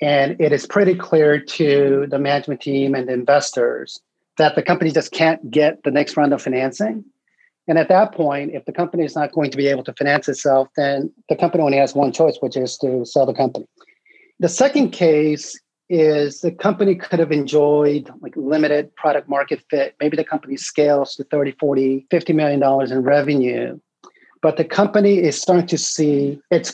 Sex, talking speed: male, 190 wpm